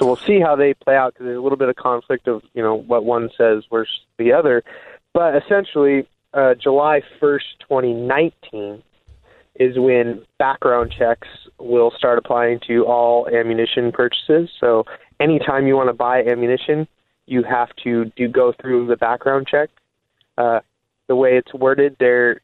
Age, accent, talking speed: 20-39, American, 165 wpm